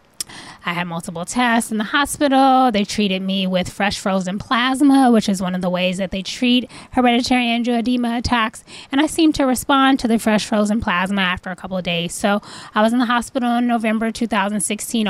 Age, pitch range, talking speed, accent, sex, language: 10-29, 185-235 Hz, 200 wpm, American, female, English